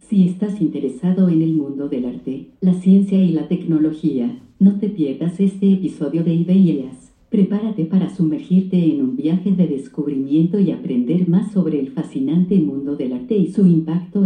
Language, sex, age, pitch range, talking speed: Spanish, female, 50-69, 155-195 Hz, 170 wpm